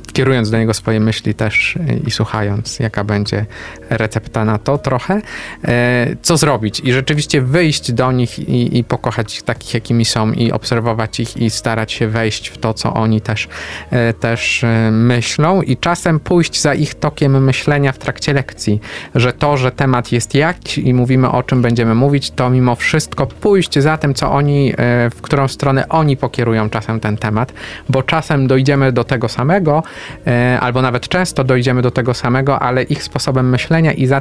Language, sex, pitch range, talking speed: Polish, male, 120-140 Hz, 175 wpm